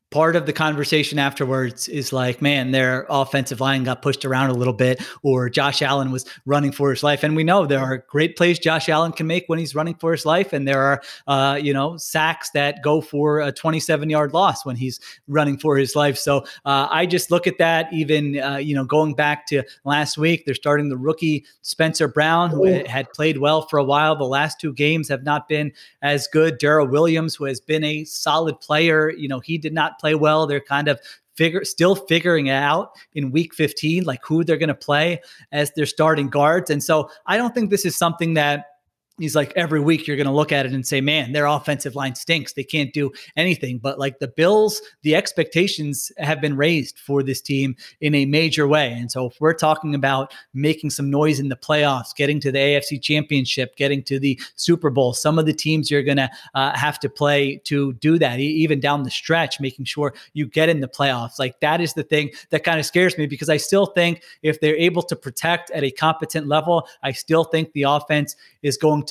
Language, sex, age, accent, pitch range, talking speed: English, male, 30-49, American, 140-160 Hz, 225 wpm